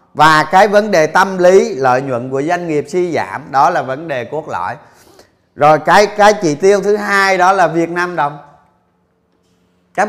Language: Vietnamese